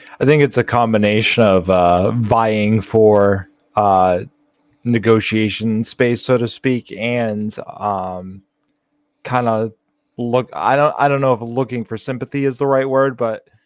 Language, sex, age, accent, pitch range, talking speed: English, male, 30-49, American, 110-125 Hz, 150 wpm